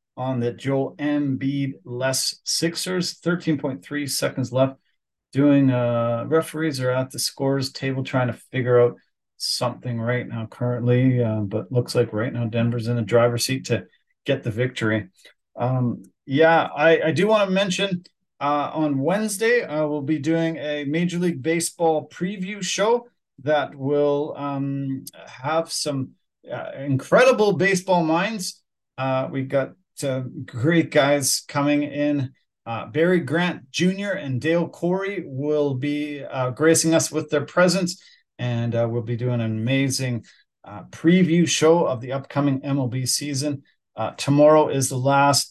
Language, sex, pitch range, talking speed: English, male, 130-160 Hz, 150 wpm